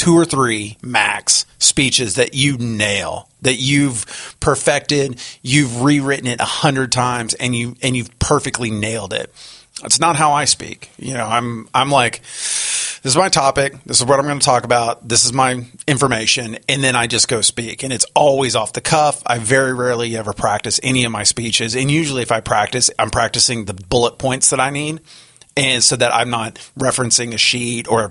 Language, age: English, 30-49